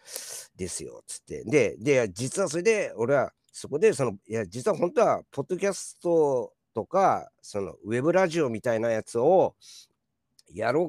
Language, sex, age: Japanese, male, 50-69